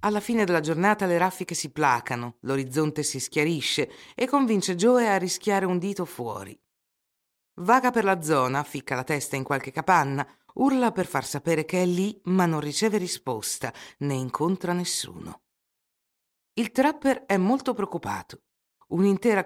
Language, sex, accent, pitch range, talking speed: Italian, female, native, 125-185 Hz, 150 wpm